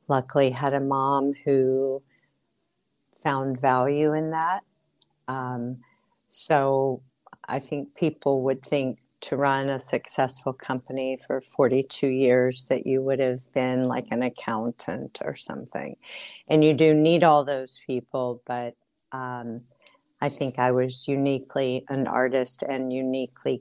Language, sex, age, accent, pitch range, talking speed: English, female, 50-69, American, 125-140 Hz, 130 wpm